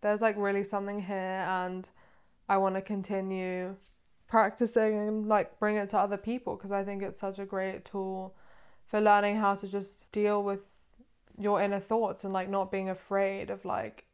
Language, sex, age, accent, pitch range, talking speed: English, female, 20-39, British, 185-200 Hz, 180 wpm